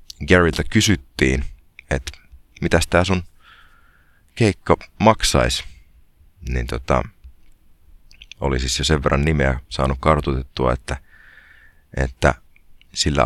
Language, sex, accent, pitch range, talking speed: Finnish, male, native, 70-90 Hz, 95 wpm